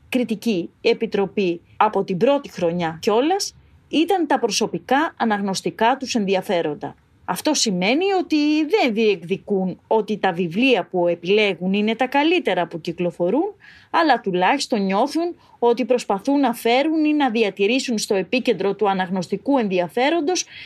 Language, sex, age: Greek, female, 30-49